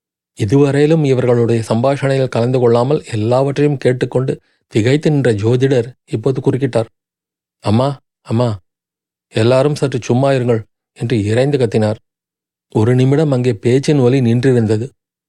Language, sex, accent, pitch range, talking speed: Tamil, male, native, 115-140 Hz, 100 wpm